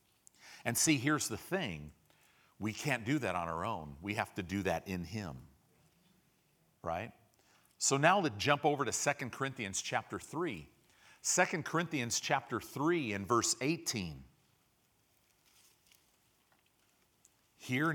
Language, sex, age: English, male, 50-69